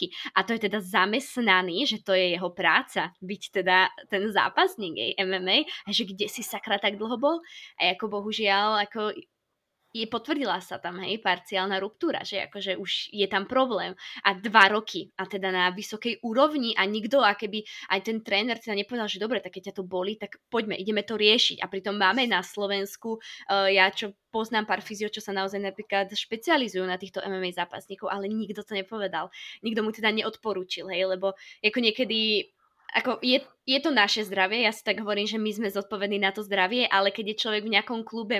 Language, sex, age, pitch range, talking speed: Slovak, female, 20-39, 195-225 Hz, 190 wpm